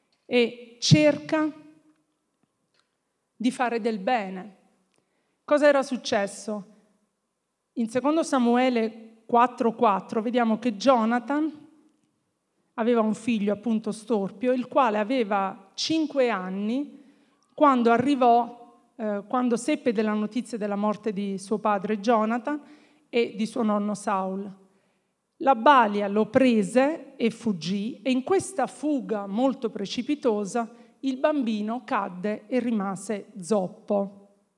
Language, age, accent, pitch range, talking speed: Italian, 40-59, native, 210-260 Hz, 110 wpm